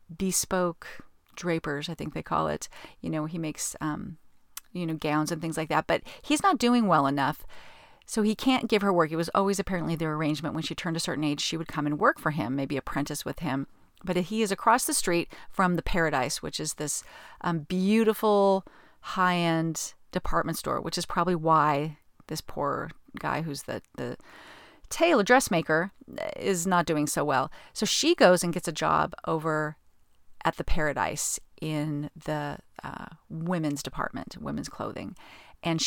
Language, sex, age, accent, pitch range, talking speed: English, female, 40-59, American, 155-200 Hz, 180 wpm